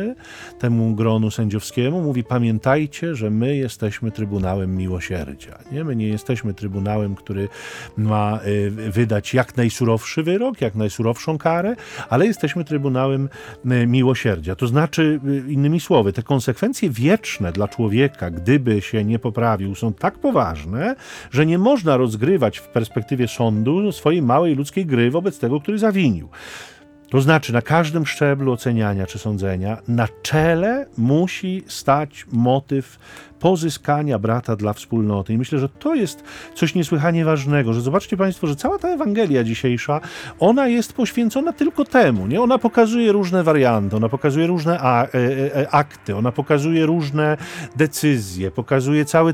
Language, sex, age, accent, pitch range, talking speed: Polish, male, 40-59, native, 115-160 Hz, 140 wpm